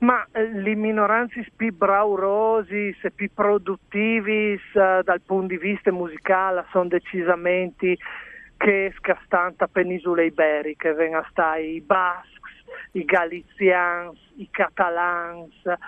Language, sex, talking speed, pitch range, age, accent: Italian, male, 105 wpm, 175-205 Hz, 50-69, native